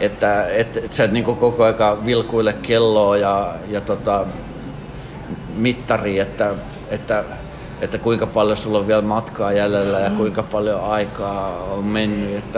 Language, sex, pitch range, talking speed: Finnish, male, 105-125 Hz, 145 wpm